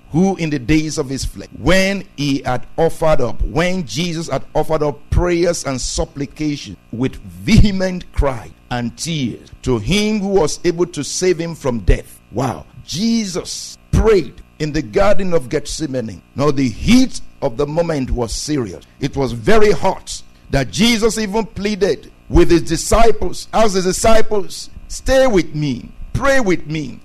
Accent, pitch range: Nigerian, 135-220 Hz